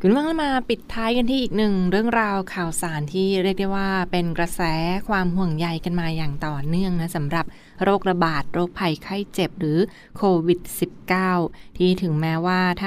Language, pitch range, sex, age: Thai, 165-190 Hz, female, 20-39